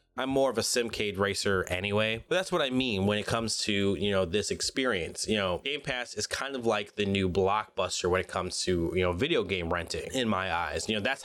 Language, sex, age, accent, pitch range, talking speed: English, male, 20-39, American, 100-125 Hz, 245 wpm